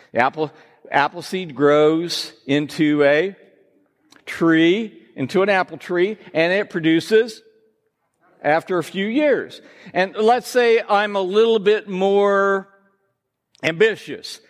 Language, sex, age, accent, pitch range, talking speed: English, male, 50-69, American, 180-245 Hz, 110 wpm